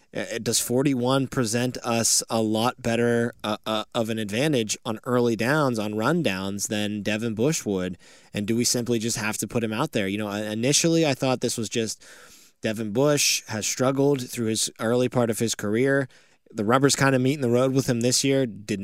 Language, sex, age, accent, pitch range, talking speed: English, male, 20-39, American, 110-125 Hz, 205 wpm